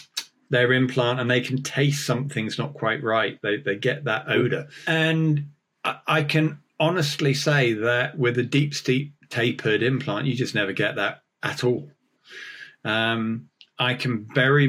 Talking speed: 160 wpm